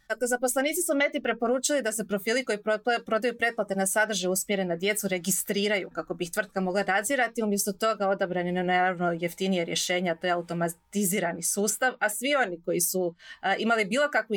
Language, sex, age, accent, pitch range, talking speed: Croatian, female, 30-49, native, 180-225 Hz, 180 wpm